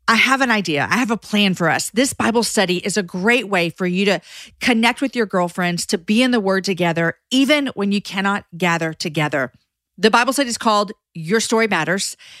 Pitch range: 185-235 Hz